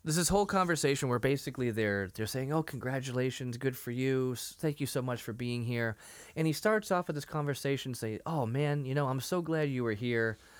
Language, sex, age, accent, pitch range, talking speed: English, male, 20-39, American, 100-145 Hz, 220 wpm